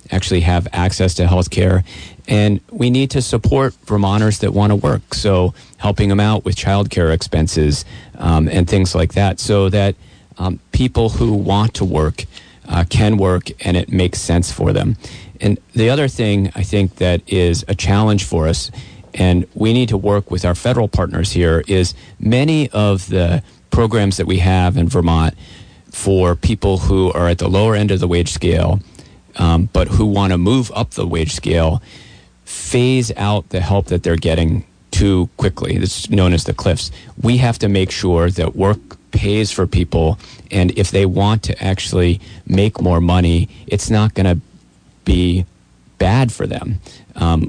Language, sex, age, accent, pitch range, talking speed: English, male, 40-59, American, 85-105 Hz, 180 wpm